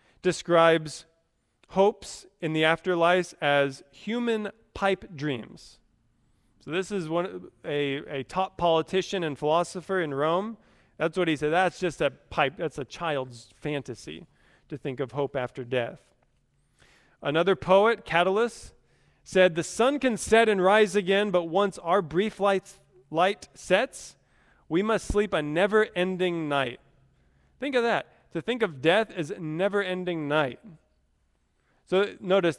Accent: American